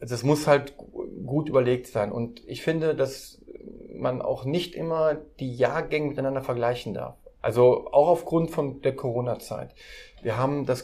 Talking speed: 160 wpm